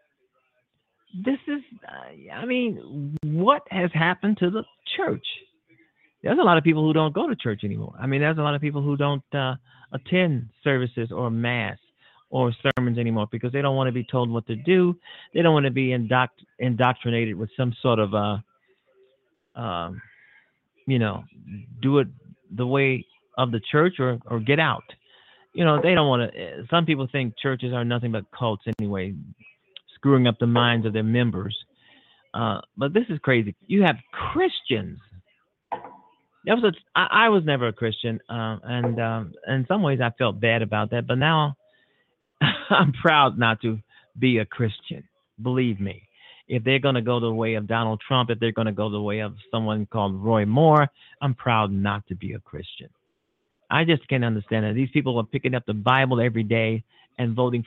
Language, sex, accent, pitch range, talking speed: English, male, American, 115-150 Hz, 185 wpm